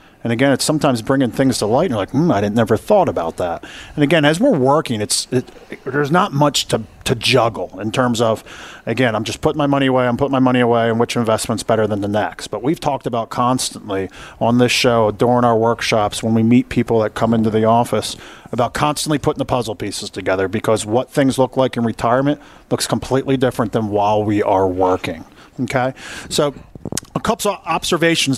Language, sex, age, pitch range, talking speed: English, male, 40-59, 110-135 Hz, 215 wpm